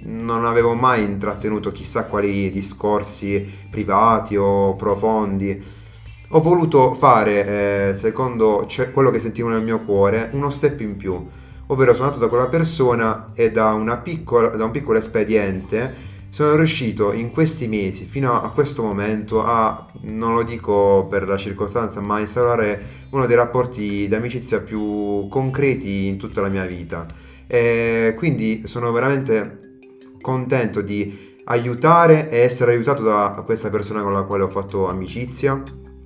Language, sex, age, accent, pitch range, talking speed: Italian, male, 30-49, native, 100-120 Hz, 145 wpm